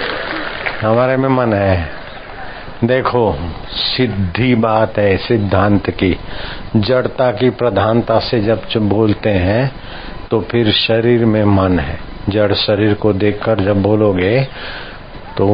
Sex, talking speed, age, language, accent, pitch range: male, 115 wpm, 50-69, Hindi, native, 100-125 Hz